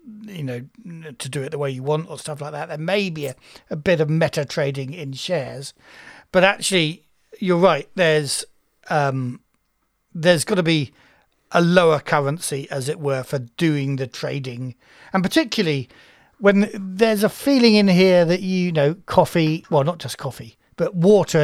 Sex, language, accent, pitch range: male, English, British, 140-185 Hz